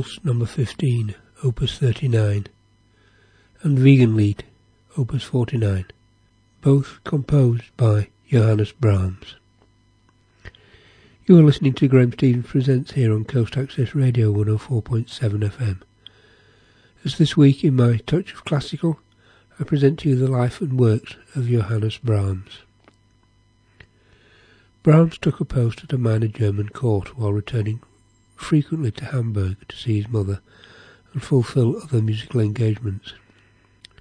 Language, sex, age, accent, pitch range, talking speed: English, male, 60-79, British, 105-130 Hz, 125 wpm